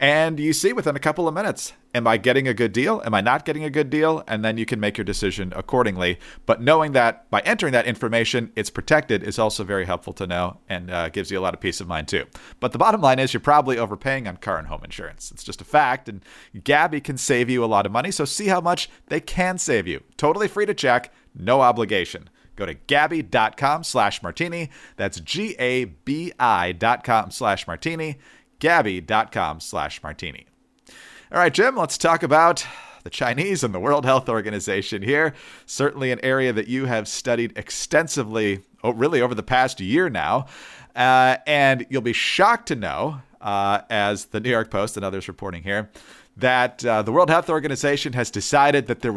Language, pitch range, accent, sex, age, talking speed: English, 105-150 Hz, American, male, 40-59, 195 wpm